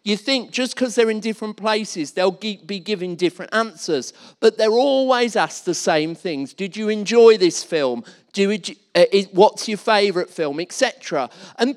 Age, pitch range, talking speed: 40-59, 185-245 Hz, 170 wpm